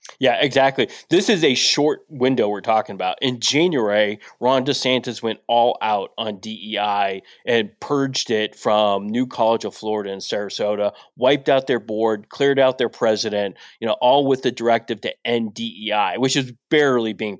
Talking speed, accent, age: 170 wpm, American, 20-39